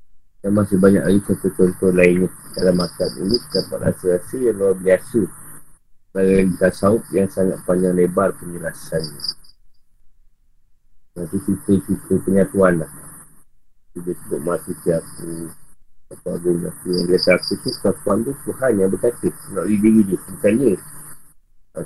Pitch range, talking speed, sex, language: 90-105 Hz, 135 wpm, male, Malay